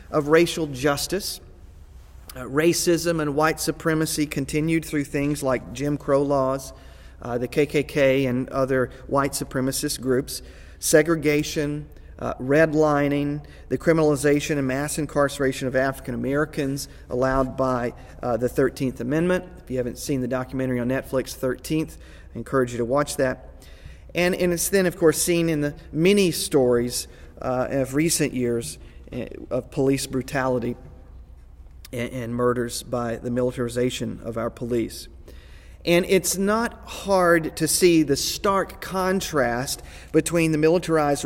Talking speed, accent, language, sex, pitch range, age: 135 wpm, American, English, male, 120-155 Hz, 40-59